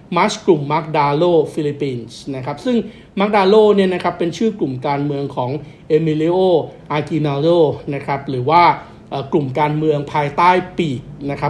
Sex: male